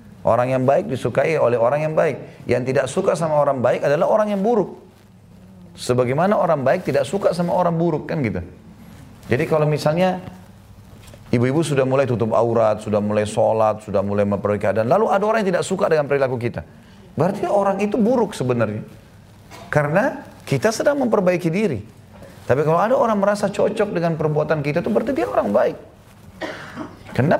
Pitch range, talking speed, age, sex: 100-145 Hz, 170 wpm, 30-49, male